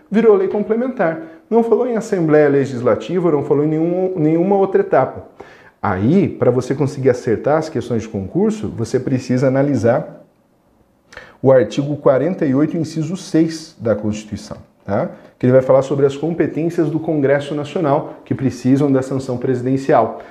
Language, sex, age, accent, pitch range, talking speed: Portuguese, male, 40-59, Brazilian, 125-160 Hz, 150 wpm